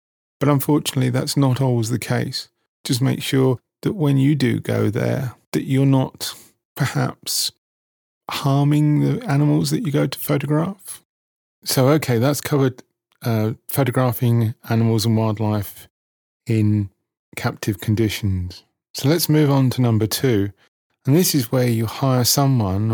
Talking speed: 140 wpm